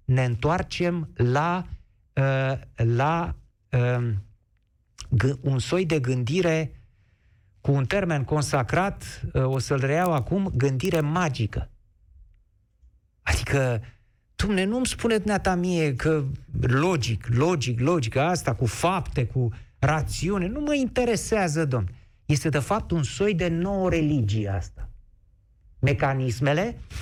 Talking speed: 115 wpm